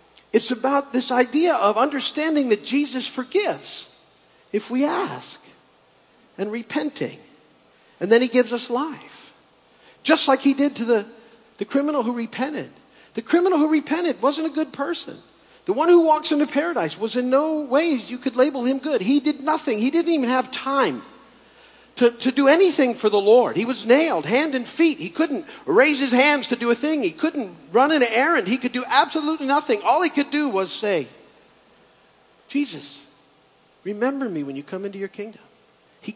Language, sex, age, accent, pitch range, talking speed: English, male, 50-69, American, 230-295 Hz, 180 wpm